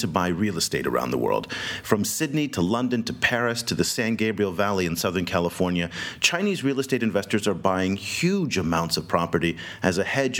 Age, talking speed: 40-59, 195 wpm